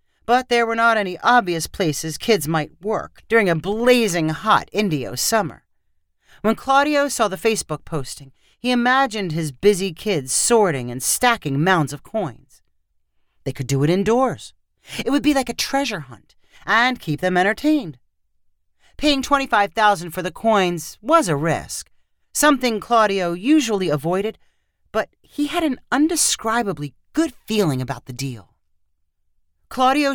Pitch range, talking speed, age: 140-230 Hz, 145 wpm, 40-59